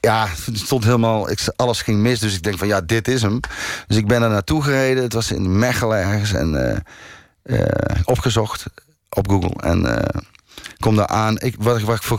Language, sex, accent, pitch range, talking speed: Dutch, male, Dutch, 100-125 Hz, 210 wpm